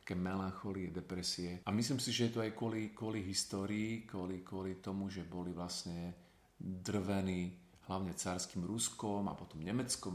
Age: 40-59